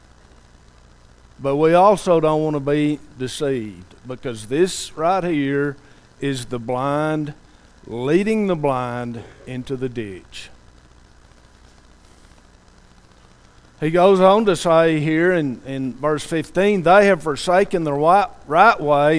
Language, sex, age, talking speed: English, male, 50-69, 115 wpm